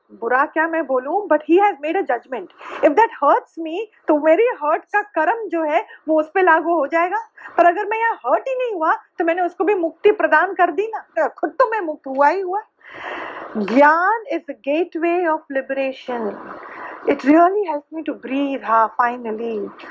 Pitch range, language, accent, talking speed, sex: 285-375 Hz, Hindi, native, 200 wpm, female